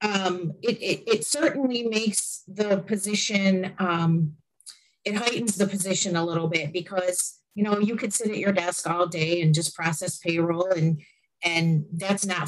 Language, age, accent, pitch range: English, 30-49, American, 165-200 Hz